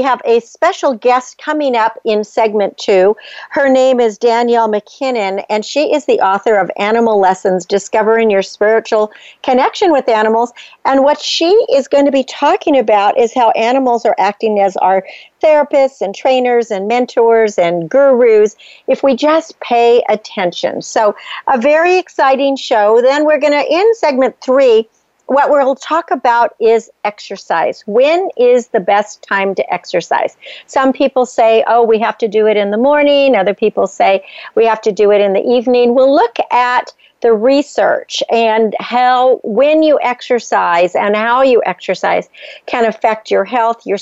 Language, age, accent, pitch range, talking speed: English, 50-69, American, 210-270 Hz, 170 wpm